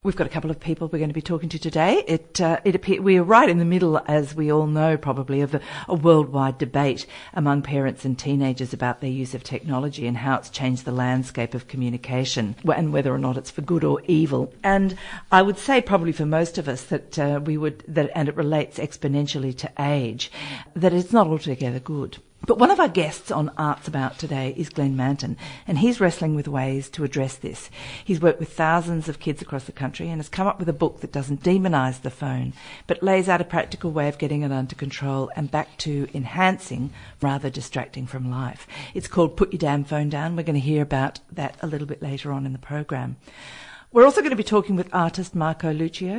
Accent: Australian